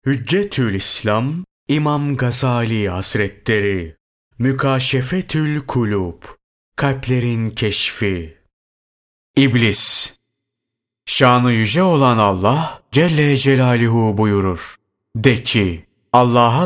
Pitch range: 105-135 Hz